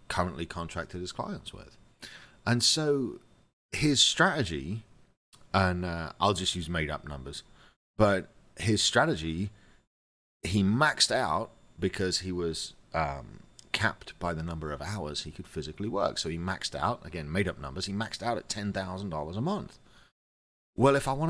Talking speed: 160 wpm